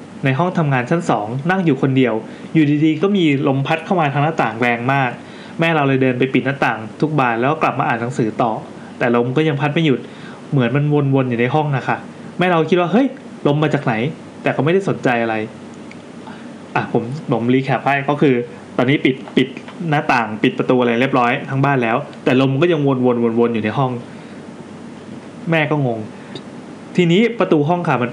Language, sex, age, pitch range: Thai, male, 20-39, 130-170 Hz